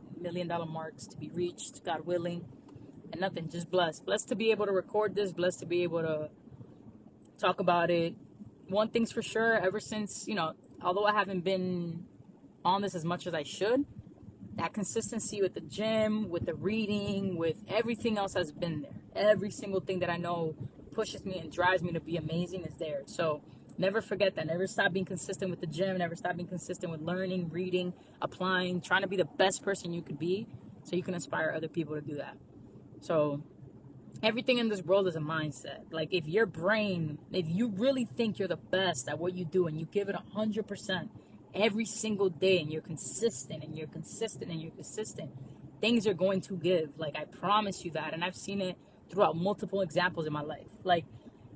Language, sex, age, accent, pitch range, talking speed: English, female, 20-39, American, 160-200 Hz, 205 wpm